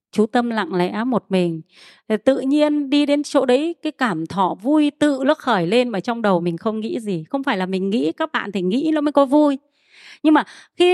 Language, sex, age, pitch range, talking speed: Vietnamese, female, 20-39, 210-295 Hz, 240 wpm